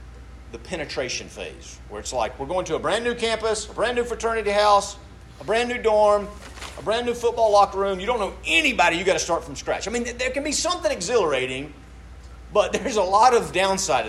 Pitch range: 110-175 Hz